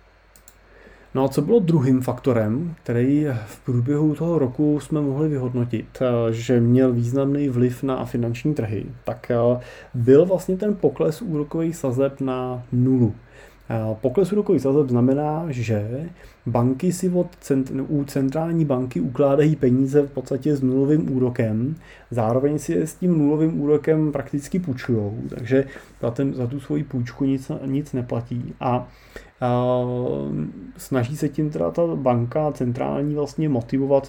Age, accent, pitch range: 30-49, native, 120-140 Hz